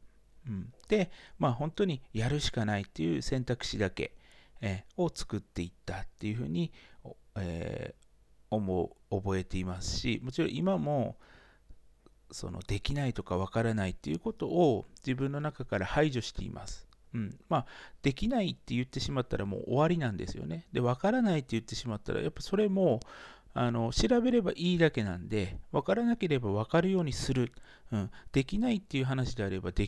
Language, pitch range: Japanese, 105-170 Hz